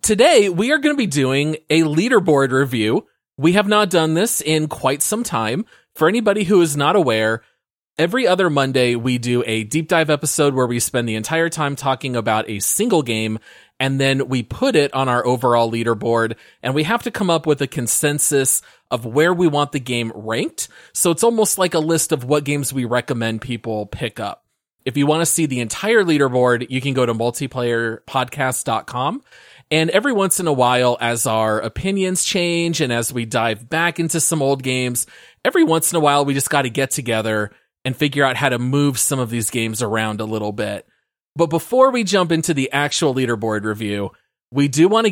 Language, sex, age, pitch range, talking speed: English, male, 30-49, 125-165 Hz, 205 wpm